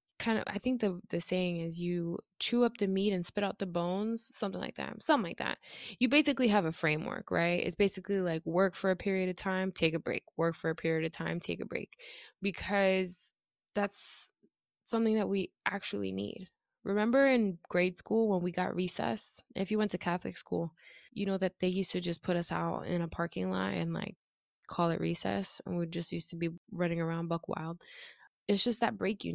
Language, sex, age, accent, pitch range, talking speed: English, female, 20-39, American, 170-205 Hz, 215 wpm